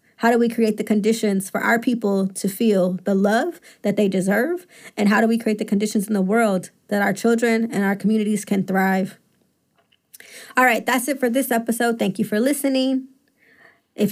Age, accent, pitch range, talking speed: 20-39, American, 205-230 Hz, 195 wpm